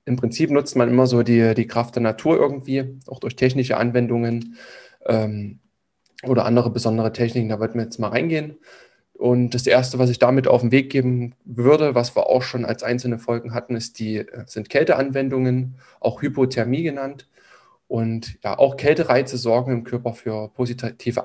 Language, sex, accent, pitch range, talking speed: German, male, German, 115-130 Hz, 175 wpm